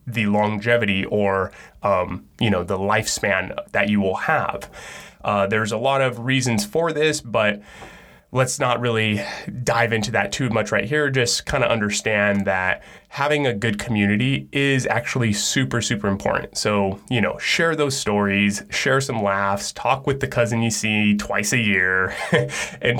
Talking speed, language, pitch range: 165 wpm, English, 100-130 Hz